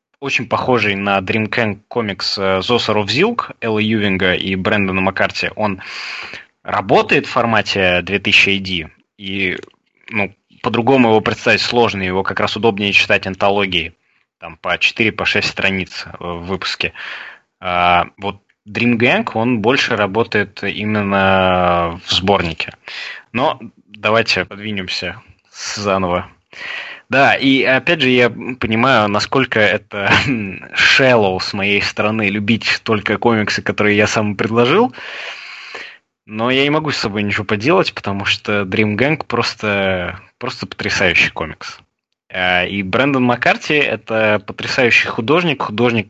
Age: 20-39